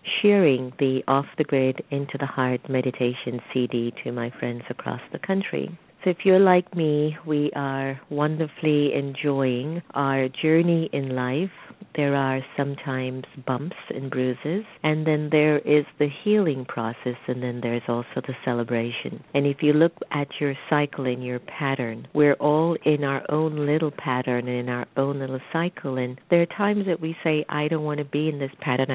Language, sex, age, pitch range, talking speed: English, female, 50-69, 125-155 Hz, 175 wpm